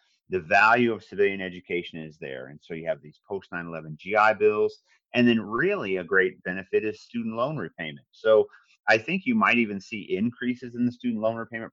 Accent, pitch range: American, 90-125 Hz